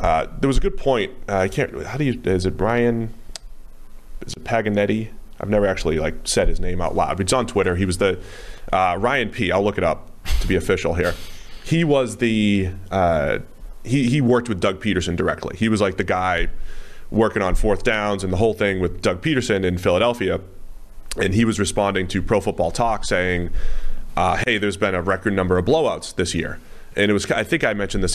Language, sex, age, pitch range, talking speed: English, male, 30-49, 95-120 Hz, 215 wpm